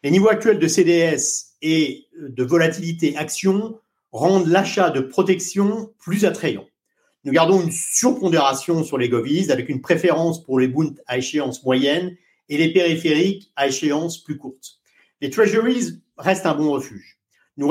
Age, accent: 50-69, French